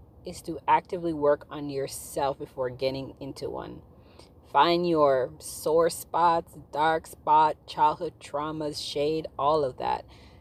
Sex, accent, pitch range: female, American, 140-190 Hz